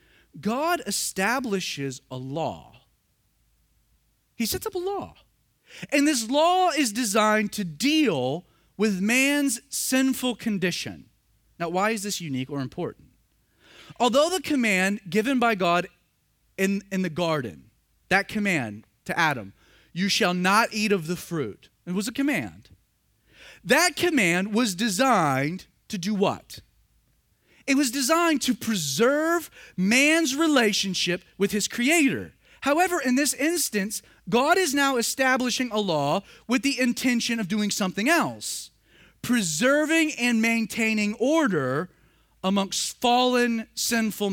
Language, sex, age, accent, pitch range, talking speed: English, male, 30-49, American, 175-260 Hz, 125 wpm